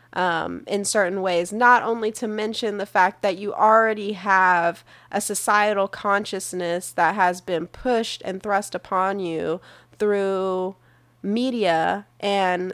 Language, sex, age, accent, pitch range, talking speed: English, female, 10-29, American, 170-215 Hz, 130 wpm